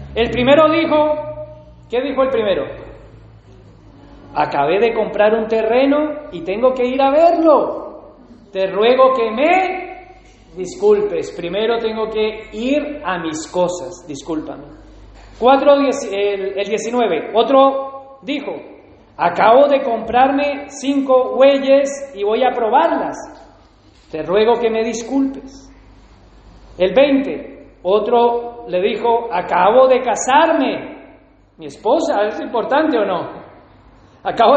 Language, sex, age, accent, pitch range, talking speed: Spanish, male, 40-59, Mexican, 215-295 Hz, 115 wpm